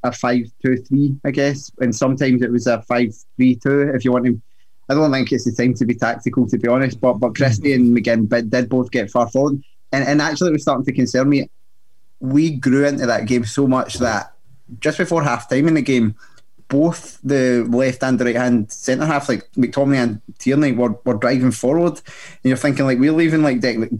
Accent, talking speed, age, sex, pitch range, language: British, 215 wpm, 20-39, male, 120-140 Hz, English